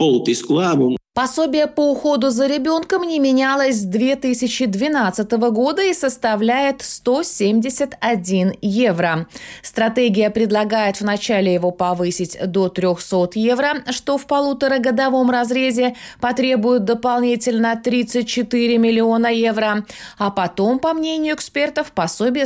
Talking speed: 100 wpm